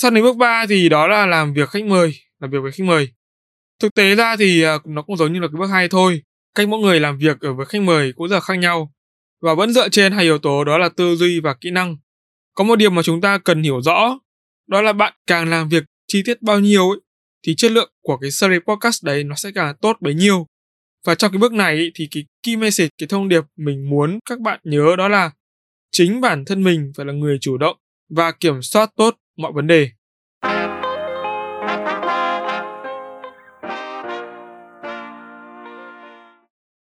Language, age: Vietnamese, 20-39